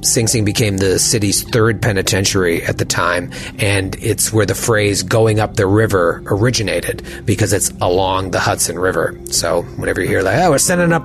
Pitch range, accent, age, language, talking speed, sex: 95-115 Hz, American, 30-49, English, 190 wpm, male